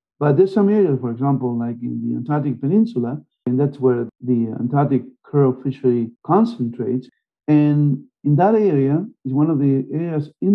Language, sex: English, male